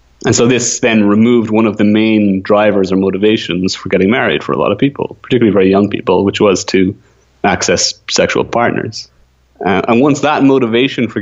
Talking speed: 195 wpm